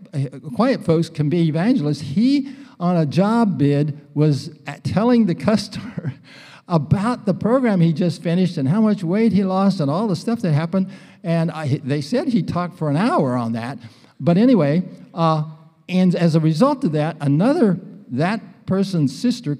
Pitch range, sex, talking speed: 145-200 Hz, male, 170 wpm